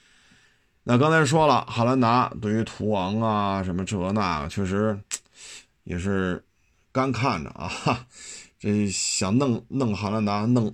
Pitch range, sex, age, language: 90-120 Hz, male, 50-69, Chinese